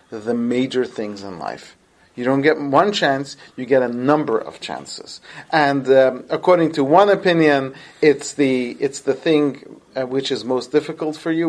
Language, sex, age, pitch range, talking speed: English, male, 40-59, 125-155 Hz, 170 wpm